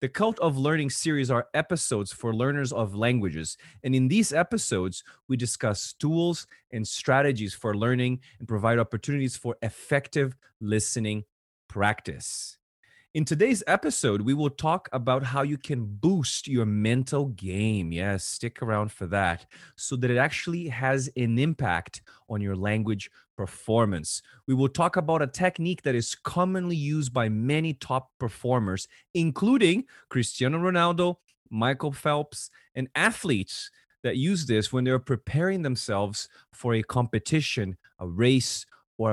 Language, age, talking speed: English, 30-49, 145 wpm